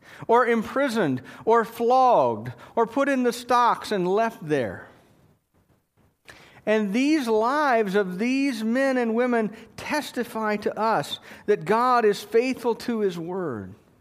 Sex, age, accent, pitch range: male, 50-69, American, 170-230 Hz